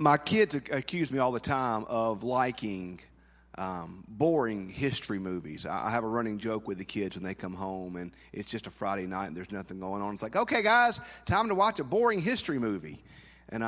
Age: 40-59